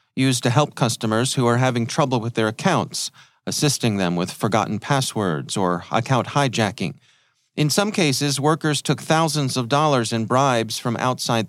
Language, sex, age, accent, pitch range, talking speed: English, male, 40-59, American, 110-140 Hz, 160 wpm